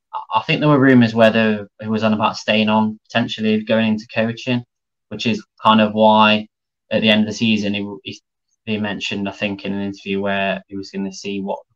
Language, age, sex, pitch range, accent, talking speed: English, 10-29, male, 100-110 Hz, British, 215 wpm